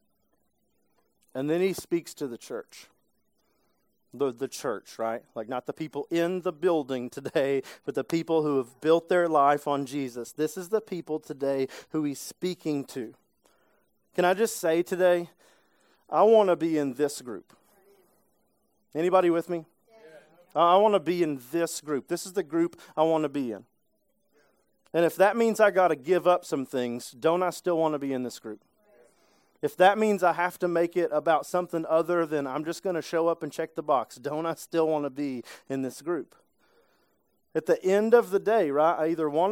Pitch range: 145-180 Hz